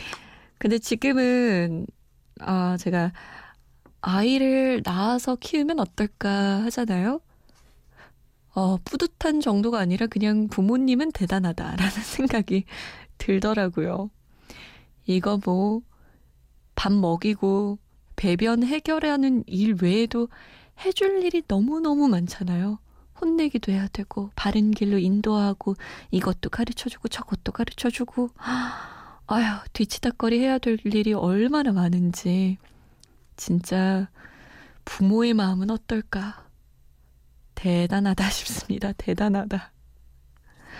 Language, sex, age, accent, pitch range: Korean, female, 20-39, native, 185-240 Hz